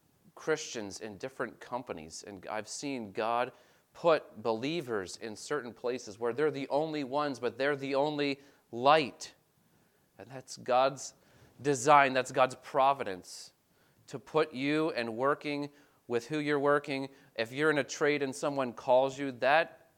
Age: 30-49